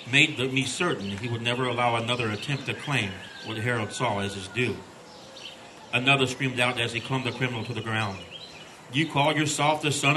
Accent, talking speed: American, 200 wpm